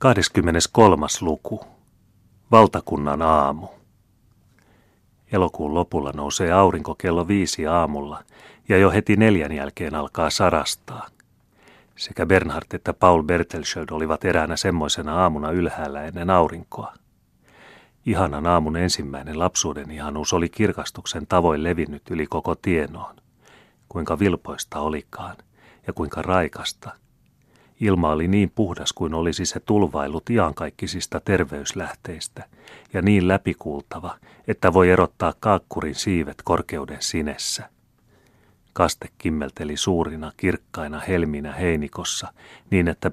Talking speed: 105 wpm